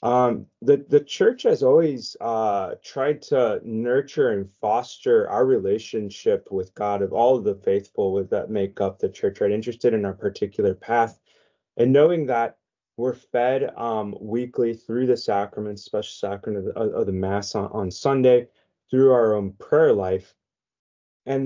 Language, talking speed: English, 160 wpm